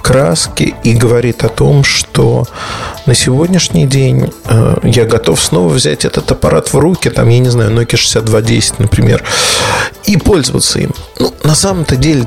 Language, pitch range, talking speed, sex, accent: Russian, 115-145 Hz, 145 wpm, male, native